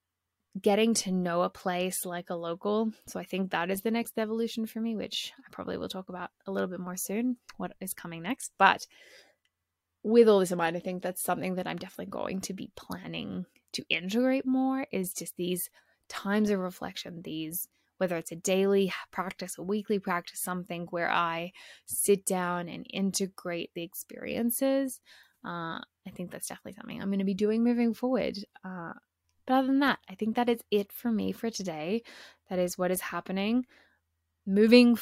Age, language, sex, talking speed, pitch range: 20-39, English, female, 190 wpm, 175-225 Hz